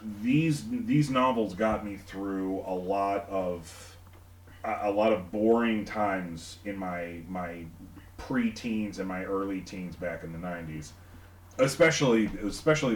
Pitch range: 90-115 Hz